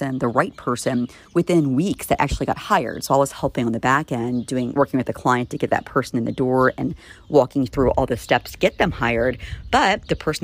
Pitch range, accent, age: 125-150 Hz, American, 40-59